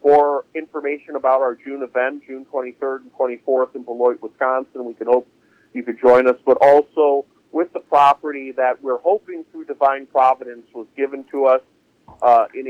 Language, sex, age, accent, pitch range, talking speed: English, male, 40-59, American, 125-145 Hz, 170 wpm